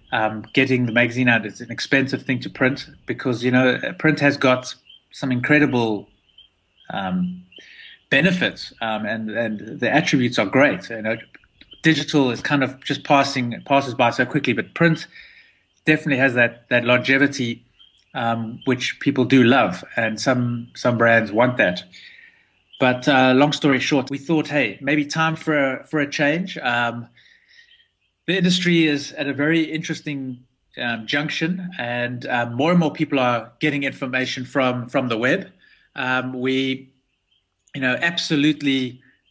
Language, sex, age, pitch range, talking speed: English, male, 30-49, 120-145 Hz, 155 wpm